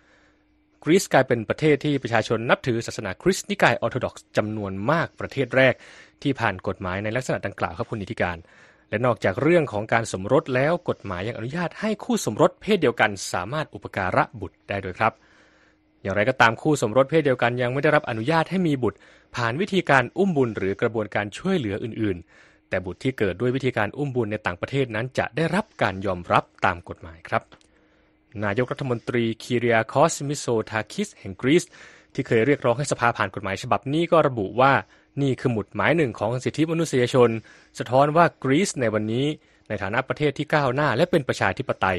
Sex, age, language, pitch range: male, 20-39, Thai, 105-145 Hz